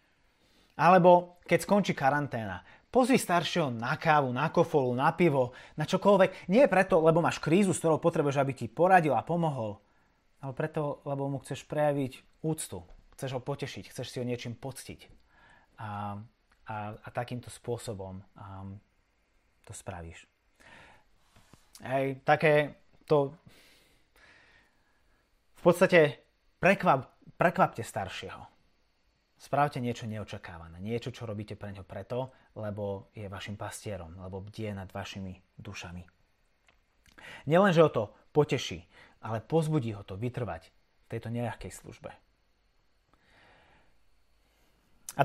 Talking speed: 115 wpm